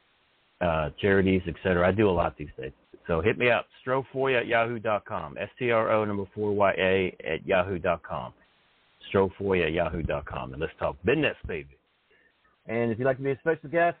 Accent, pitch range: American, 95-130 Hz